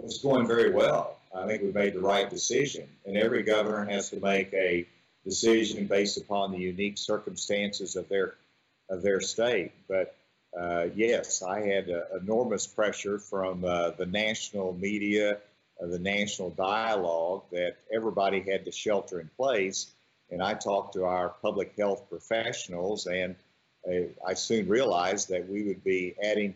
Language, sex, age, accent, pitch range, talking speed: English, male, 50-69, American, 95-105 Hz, 160 wpm